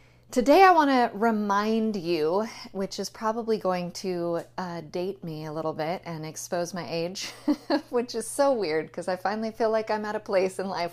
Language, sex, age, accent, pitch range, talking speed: English, female, 30-49, American, 180-240 Hz, 200 wpm